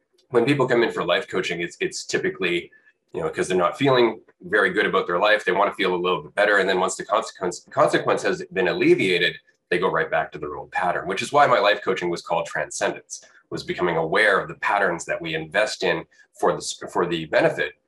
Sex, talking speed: male, 235 wpm